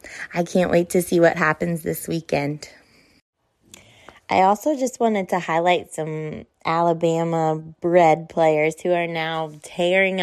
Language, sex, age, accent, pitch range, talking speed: English, female, 20-39, American, 155-175 Hz, 135 wpm